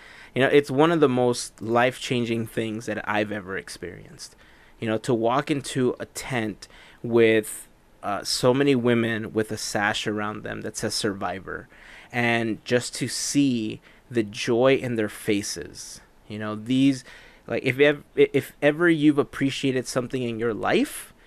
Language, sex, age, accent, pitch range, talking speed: English, male, 20-39, American, 110-125 Hz, 160 wpm